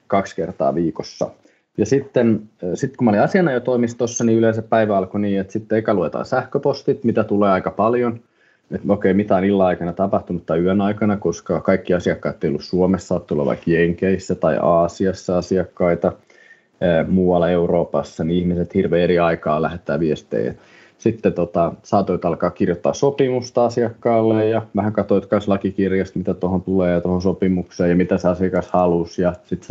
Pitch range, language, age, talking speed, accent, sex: 90-100 Hz, Finnish, 20-39, 160 wpm, native, male